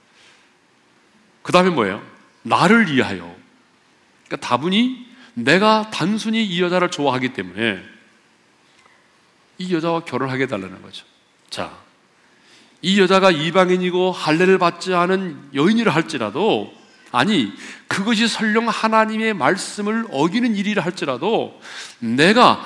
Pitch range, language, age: 180-230 Hz, Korean, 40-59